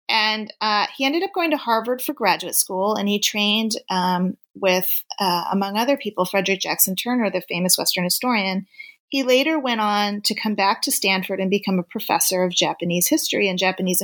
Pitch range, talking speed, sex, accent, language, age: 185-245 Hz, 190 wpm, female, American, English, 30-49